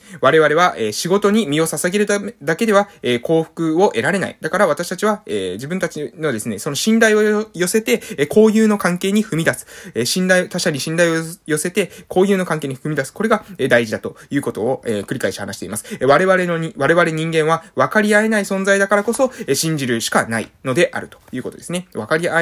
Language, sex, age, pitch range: Japanese, male, 20-39, 135-205 Hz